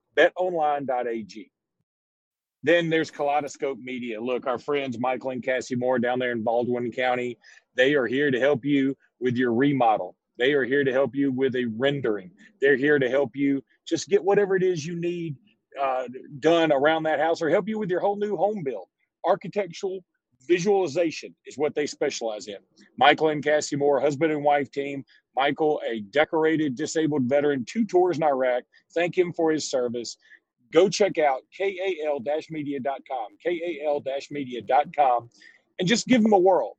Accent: American